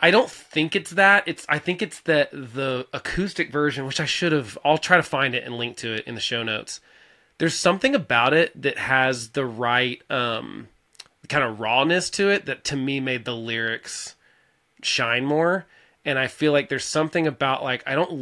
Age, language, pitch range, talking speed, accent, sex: 20-39, English, 125-155 Hz, 205 wpm, American, male